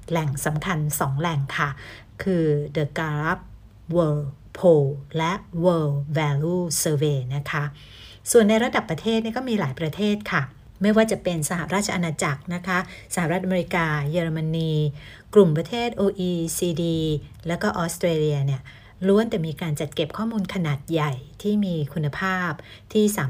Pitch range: 145-185 Hz